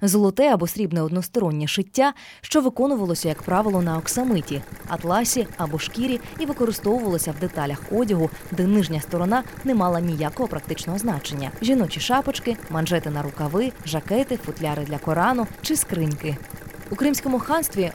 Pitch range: 165-245 Hz